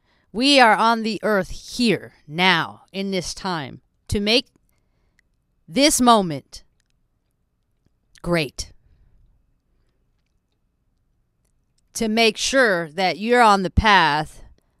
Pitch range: 170-240 Hz